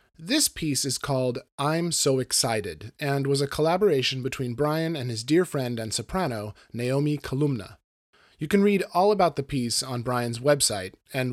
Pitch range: 120-175 Hz